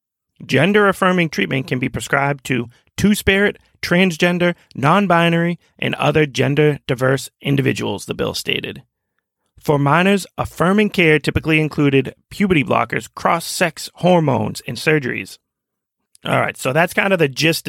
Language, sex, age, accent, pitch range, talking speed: English, male, 30-49, American, 130-175 Hz, 140 wpm